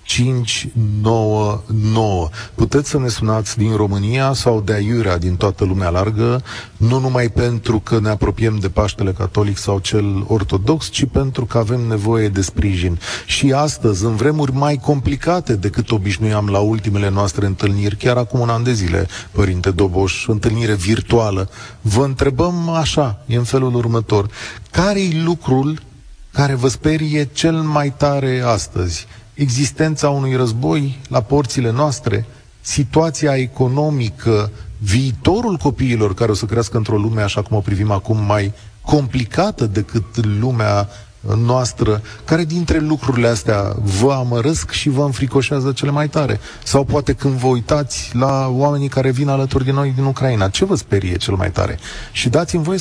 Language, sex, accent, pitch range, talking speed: Romanian, male, native, 105-140 Hz, 150 wpm